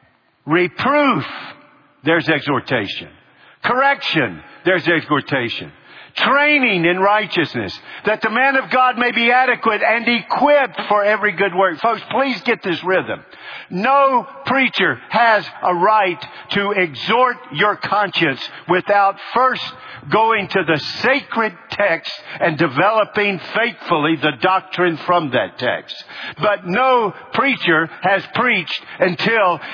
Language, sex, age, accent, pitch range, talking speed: English, male, 50-69, American, 155-225 Hz, 115 wpm